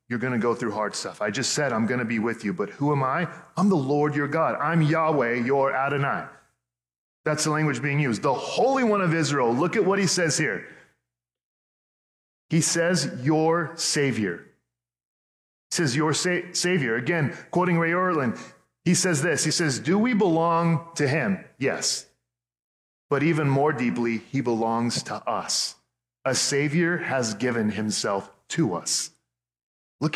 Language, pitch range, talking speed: English, 125-180 Hz, 170 wpm